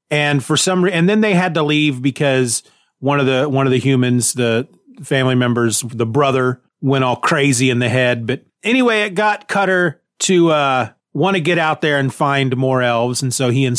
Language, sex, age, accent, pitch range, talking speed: English, male, 30-49, American, 130-180 Hz, 210 wpm